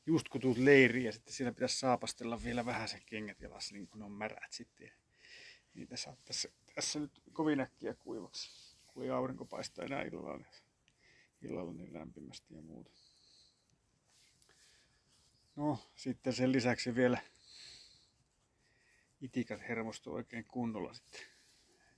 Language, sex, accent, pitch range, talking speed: Finnish, male, native, 110-125 Hz, 135 wpm